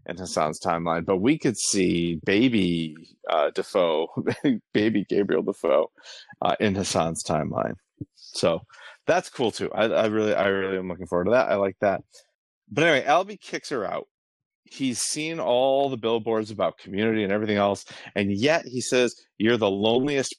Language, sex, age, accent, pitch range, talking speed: English, male, 30-49, American, 95-135 Hz, 170 wpm